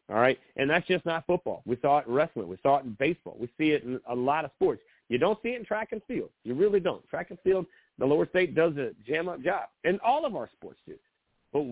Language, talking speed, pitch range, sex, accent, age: English, 270 wpm, 125-155 Hz, male, American, 40-59